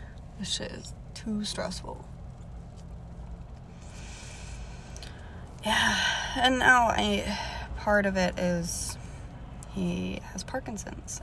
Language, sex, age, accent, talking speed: English, female, 20-39, American, 85 wpm